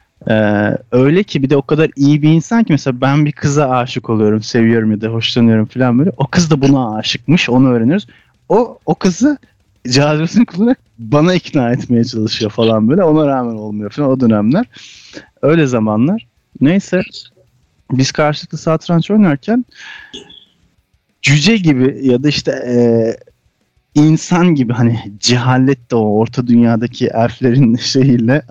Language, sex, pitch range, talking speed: Turkish, male, 115-150 Hz, 145 wpm